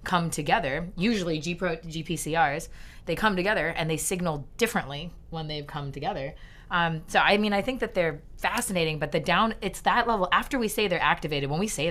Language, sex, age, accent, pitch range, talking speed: English, female, 30-49, American, 150-190 Hz, 190 wpm